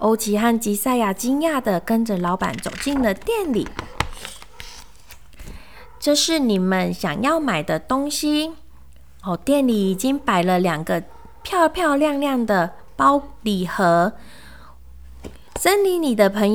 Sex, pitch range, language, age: female, 190-290 Hz, Chinese, 20-39